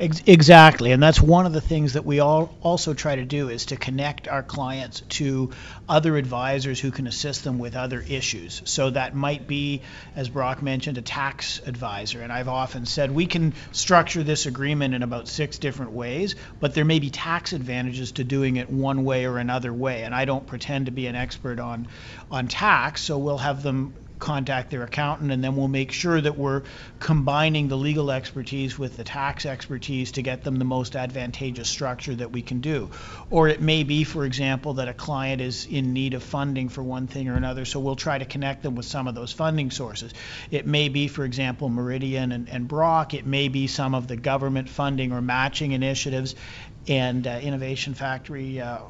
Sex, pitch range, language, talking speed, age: male, 125-145 Hz, English, 205 wpm, 40-59